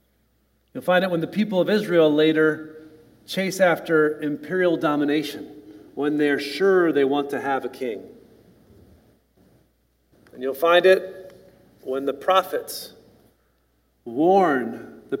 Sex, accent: male, American